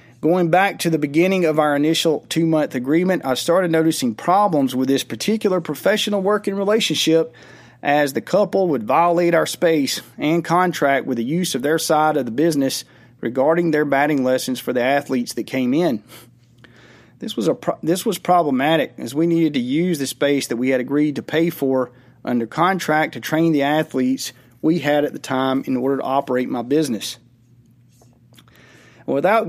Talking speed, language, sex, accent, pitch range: 175 wpm, English, male, American, 125-160 Hz